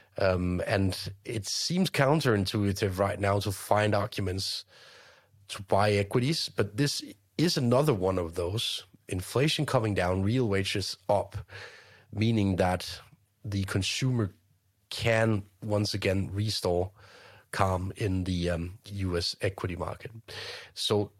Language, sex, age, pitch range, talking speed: English, male, 30-49, 95-115 Hz, 120 wpm